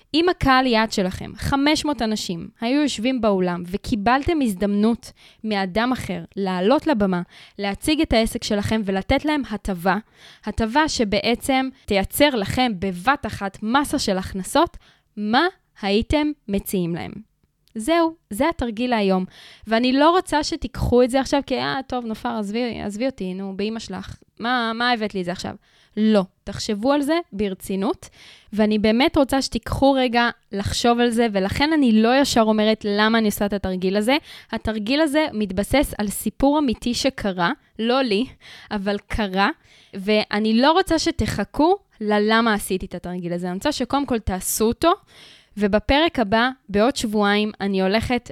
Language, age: Hebrew, 10-29